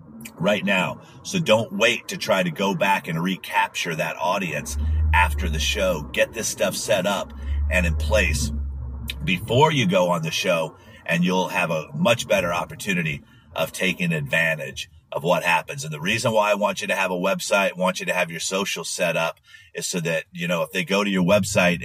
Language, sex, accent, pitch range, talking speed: English, male, American, 80-110 Hz, 205 wpm